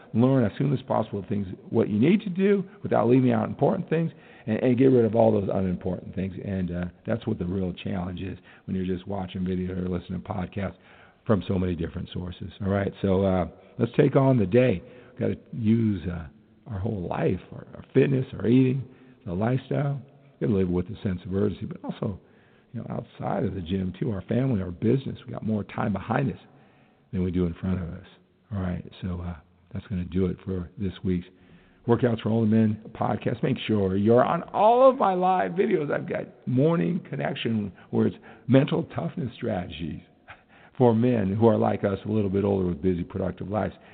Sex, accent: male, American